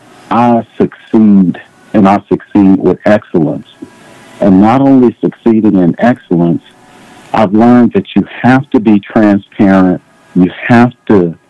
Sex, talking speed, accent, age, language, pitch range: male, 125 wpm, American, 50-69, English, 90-115 Hz